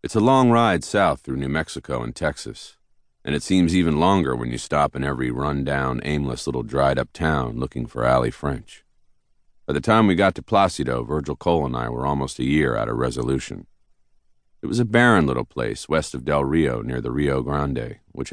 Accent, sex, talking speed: American, male, 205 wpm